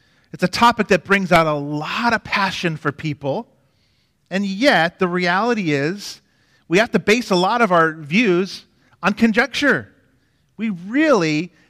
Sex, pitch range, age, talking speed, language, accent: male, 145-185 Hz, 40-59, 155 wpm, English, American